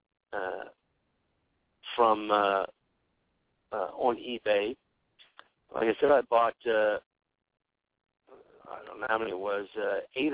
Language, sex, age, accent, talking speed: English, male, 50-69, American, 120 wpm